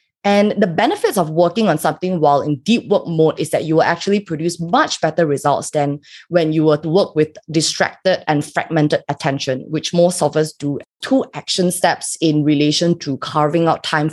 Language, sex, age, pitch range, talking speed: English, female, 20-39, 155-195 Hz, 195 wpm